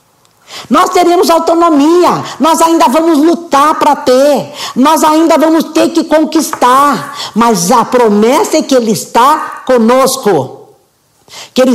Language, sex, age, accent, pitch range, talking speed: Portuguese, female, 50-69, Brazilian, 230-290 Hz, 130 wpm